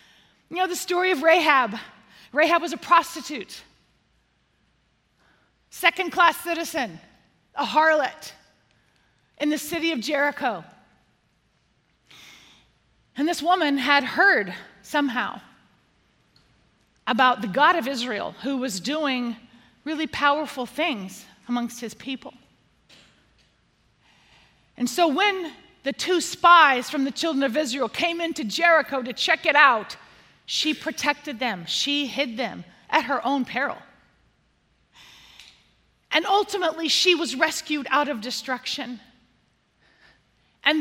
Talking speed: 110 wpm